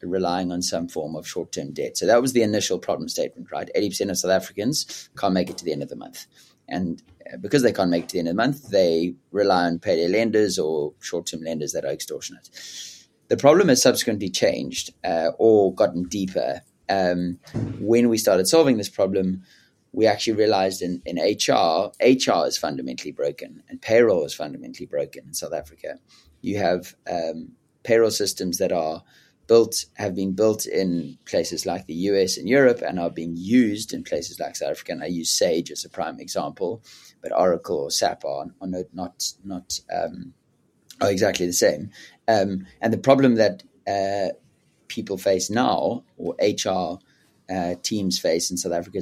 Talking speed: 185 wpm